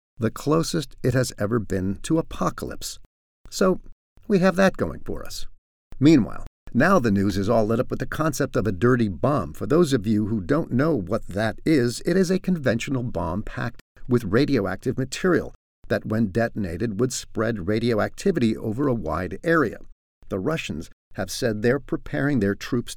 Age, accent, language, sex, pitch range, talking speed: 50-69, American, English, male, 100-145 Hz, 175 wpm